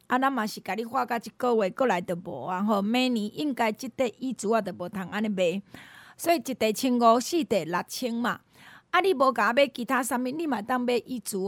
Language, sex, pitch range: Chinese, female, 210-275 Hz